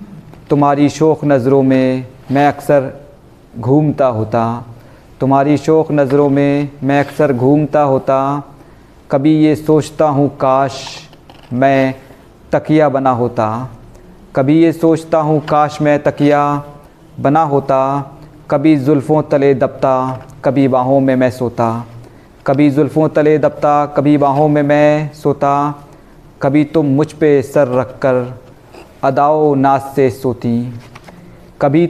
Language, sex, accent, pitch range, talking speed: Hindi, male, native, 135-150 Hz, 120 wpm